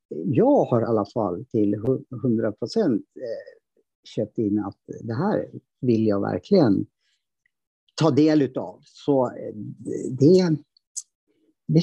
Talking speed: 105 wpm